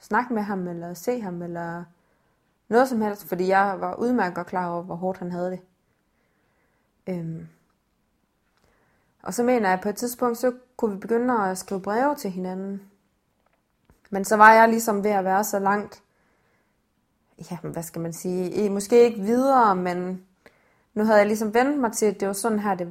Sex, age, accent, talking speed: female, 20-39, native, 190 wpm